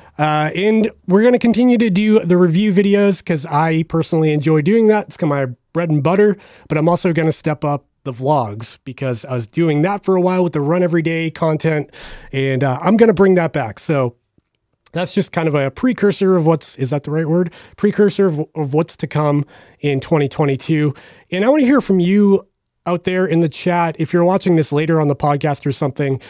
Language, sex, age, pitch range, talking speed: English, male, 30-49, 150-195 Hz, 225 wpm